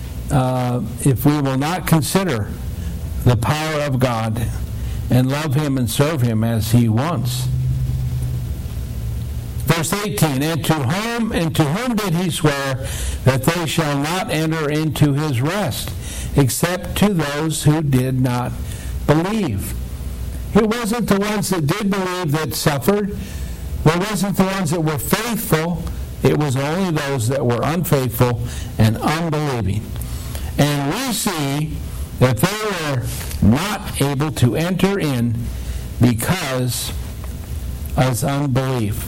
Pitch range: 110-160 Hz